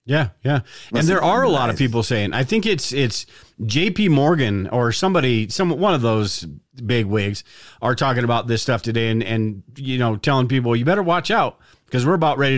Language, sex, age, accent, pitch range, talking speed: English, male, 40-59, American, 115-150 Hz, 210 wpm